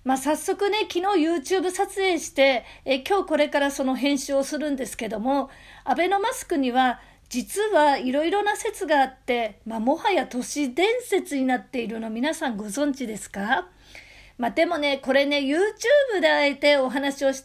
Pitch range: 255-335 Hz